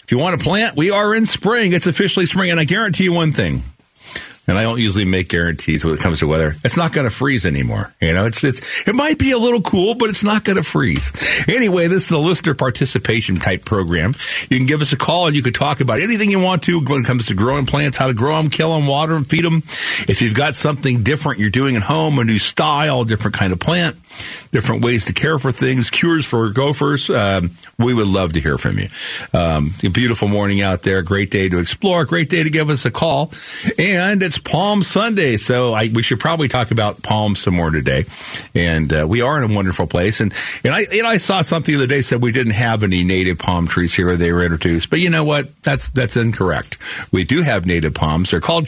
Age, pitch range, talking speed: 50-69, 95-160 Hz, 245 wpm